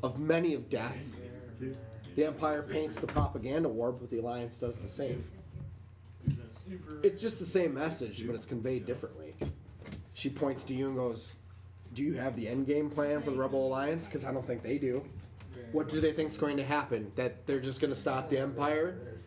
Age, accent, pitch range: 20-39, American, 115-160 Hz